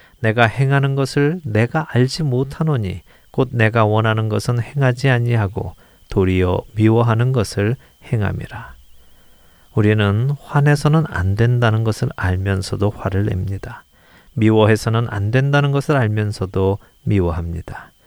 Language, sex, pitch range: Korean, male, 95-125 Hz